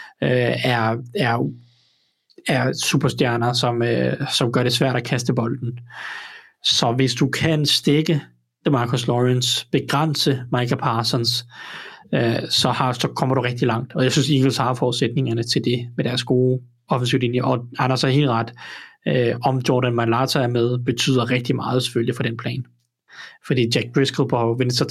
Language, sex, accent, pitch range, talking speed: Danish, male, native, 125-145 Hz, 165 wpm